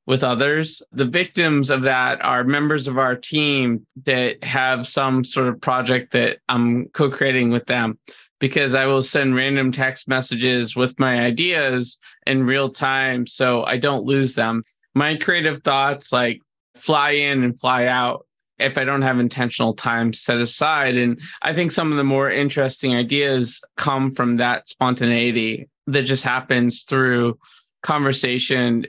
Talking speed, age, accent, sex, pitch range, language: 155 wpm, 20-39, American, male, 120-135 Hz, English